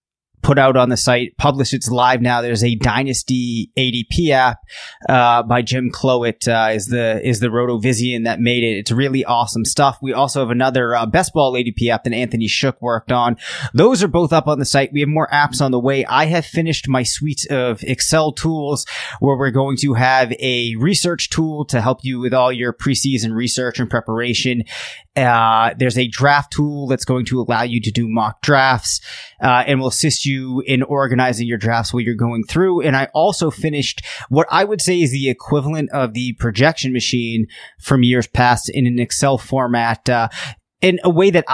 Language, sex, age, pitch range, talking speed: English, male, 20-39, 120-140 Hz, 200 wpm